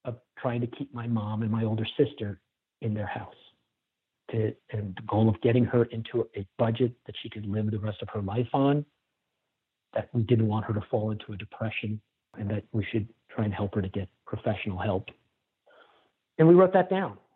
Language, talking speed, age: English, 205 wpm, 50-69